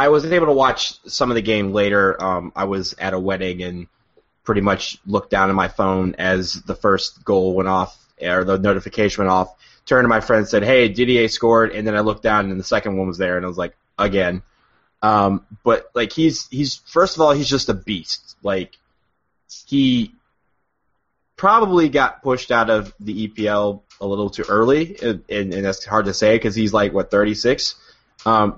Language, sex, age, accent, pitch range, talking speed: English, male, 20-39, American, 95-120 Hz, 210 wpm